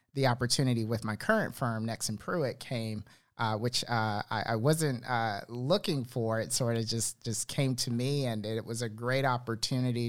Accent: American